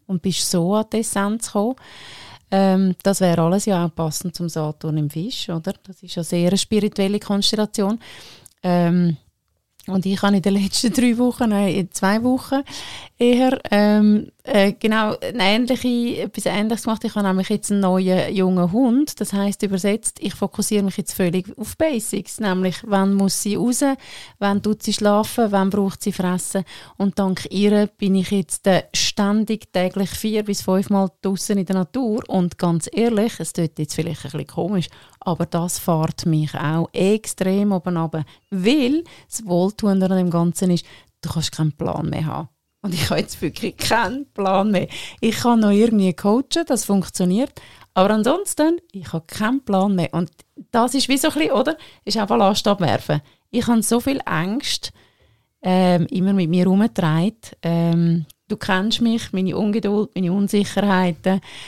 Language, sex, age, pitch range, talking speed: German, female, 30-49, 180-215 Hz, 170 wpm